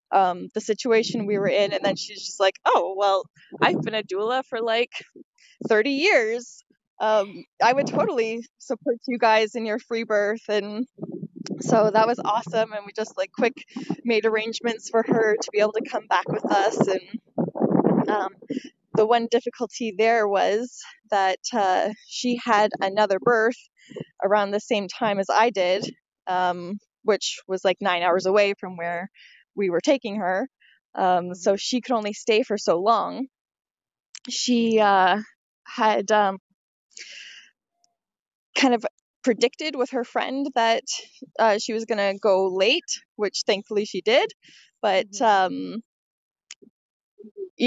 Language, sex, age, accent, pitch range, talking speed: English, female, 10-29, American, 200-240 Hz, 150 wpm